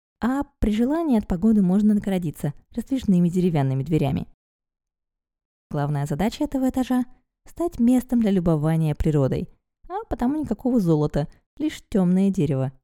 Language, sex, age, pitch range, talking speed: Russian, female, 20-39, 155-245 Hz, 120 wpm